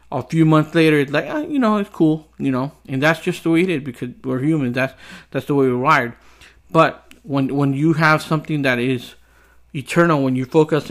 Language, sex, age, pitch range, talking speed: English, male, 50-69, 125-150 Hz, 220 wpm